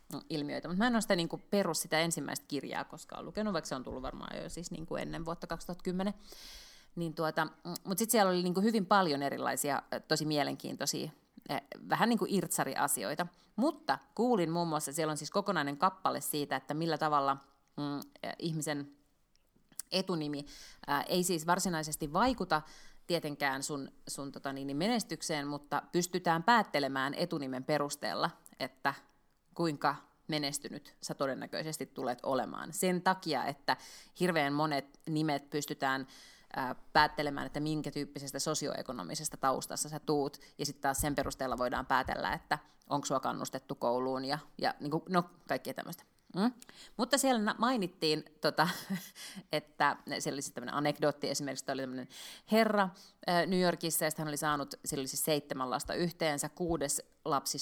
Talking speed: 140 wpm